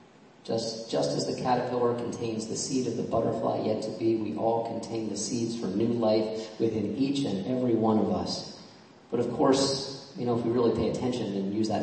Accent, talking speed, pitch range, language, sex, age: American, 215 wpm, 105-130 Hz, English, male, 40-59